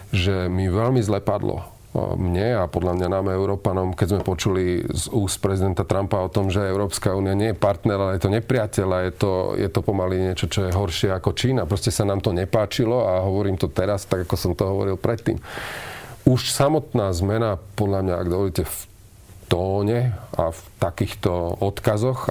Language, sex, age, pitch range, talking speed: Slovak, male, 40-59, 95-115 Hz, 185 wpm